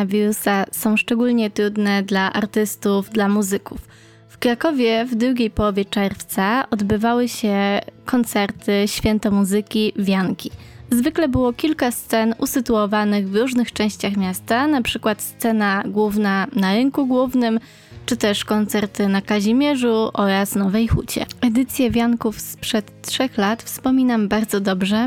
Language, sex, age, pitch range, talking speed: Polish, female, 20-39, 205-245 Hz, 120 wpm